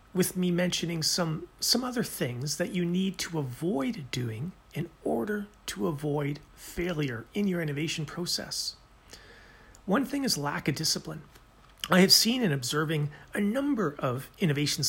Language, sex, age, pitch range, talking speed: English, male, 40-59, 145-205 Hz, 150 wpm